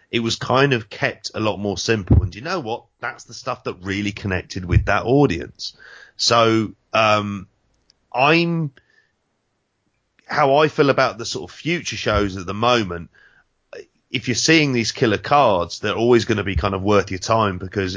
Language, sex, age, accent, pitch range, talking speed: English, male, 30-49, British, 95-120 Hz, 185 wpm